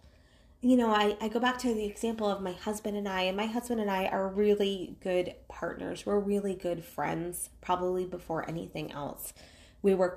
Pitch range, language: 195-255 Hz, English